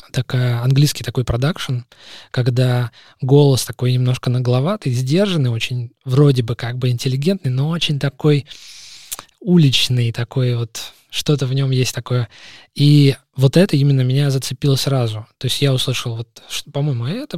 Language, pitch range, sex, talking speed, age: Russian, 120-140 Hz, male, 140 wpm, 20-39